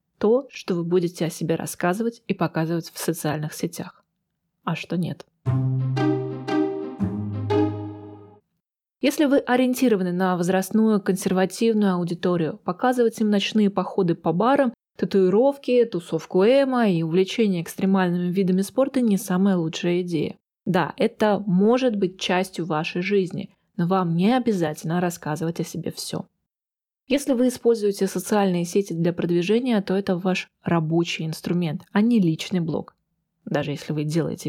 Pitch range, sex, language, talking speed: 170-215 Hz, female, Russian, 130 wpm